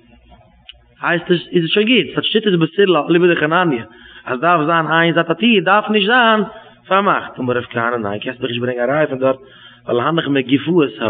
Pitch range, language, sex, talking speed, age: 115-160 Hz, English, male, 240 wpm, 30-49